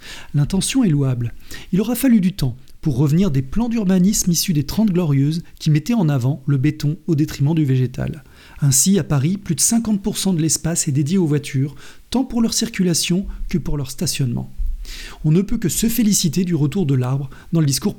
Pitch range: 140-190 Hz